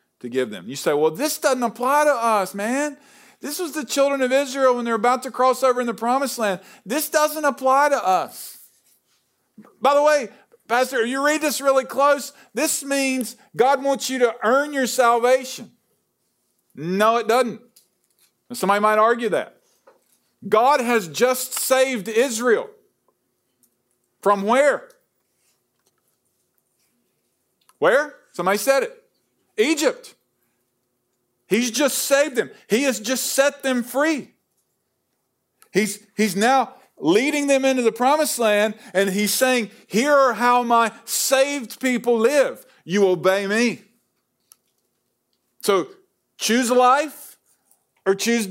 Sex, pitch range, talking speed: male, 210-275 Hz, 135 wpm